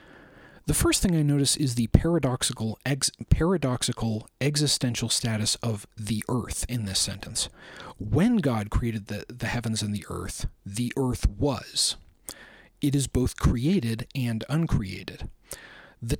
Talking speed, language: 135 wpm, English